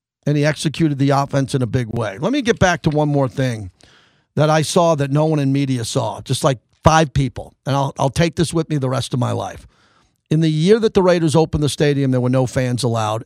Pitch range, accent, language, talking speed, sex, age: 130-170 Hz, American, English, 255 wpm, male, 50-69